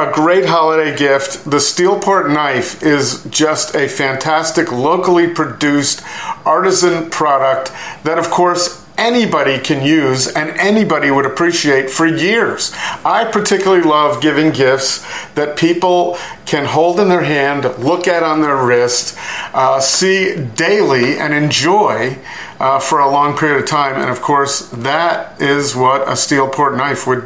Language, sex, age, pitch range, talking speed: English, male, 50-69, 140-170 Hz, 145 wpm